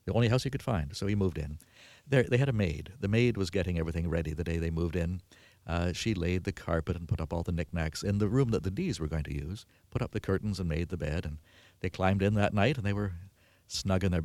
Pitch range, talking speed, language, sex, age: 85-110 Hz, 280 wpm, English, male, 50-69